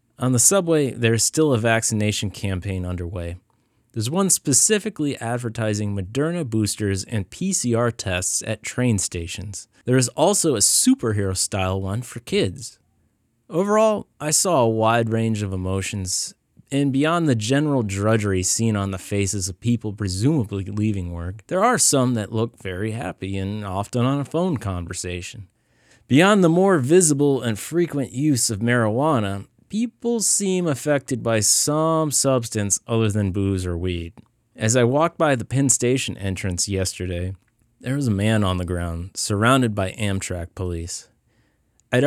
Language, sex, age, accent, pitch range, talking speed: English, male, 30-49, American, 95-130 Hz, 150 wpm